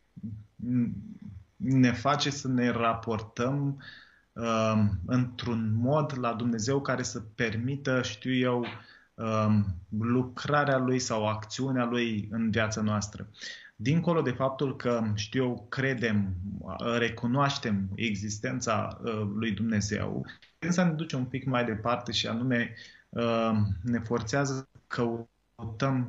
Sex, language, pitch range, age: male, Romanian, 110-130 Hz, 20-39